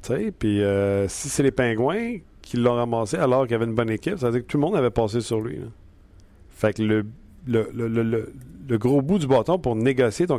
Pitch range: 105-130 Hz